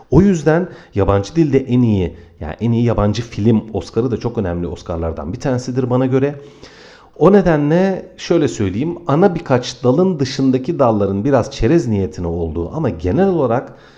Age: 40-59